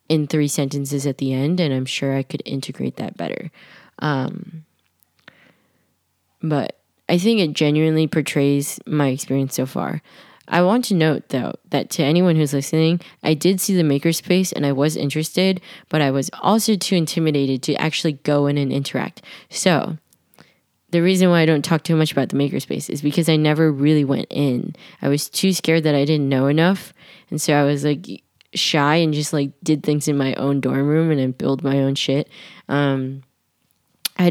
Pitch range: 140-170 Hz